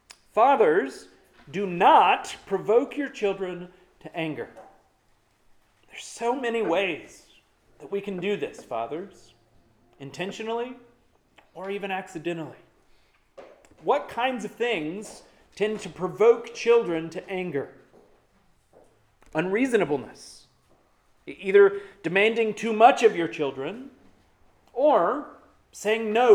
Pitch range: 175-235 Hz